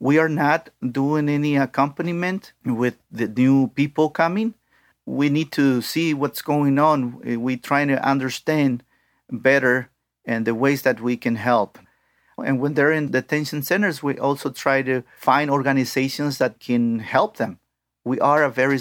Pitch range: 125-155 Hz